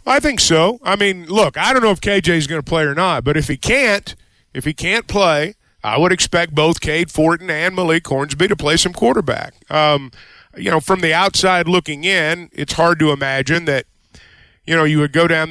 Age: 50-69